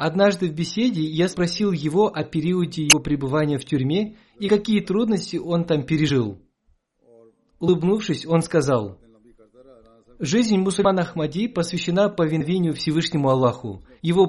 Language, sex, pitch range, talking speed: Russian, male, 130-180 Hz, 120 wpm